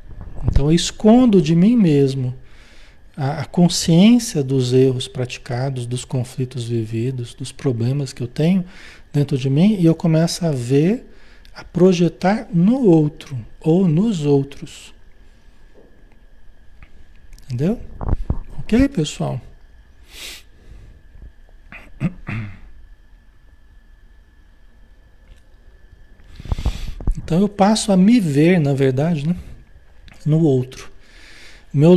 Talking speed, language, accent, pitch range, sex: 95 wpm, Portuguese, Brazilian, 120-175 Hz, male